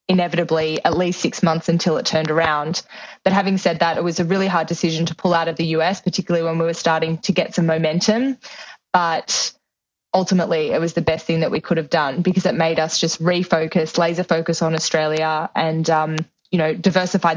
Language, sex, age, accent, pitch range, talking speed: English, female, 20-39, Australian, 160-180 Hz, 210 wpm